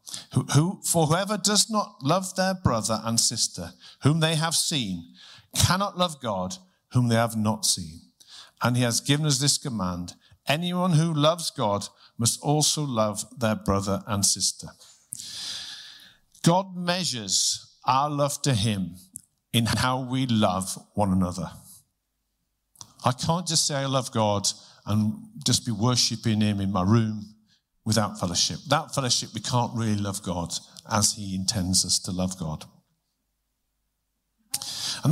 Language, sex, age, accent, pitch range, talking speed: English, male, 50-69, British, 105-155 Hz, 140 wpm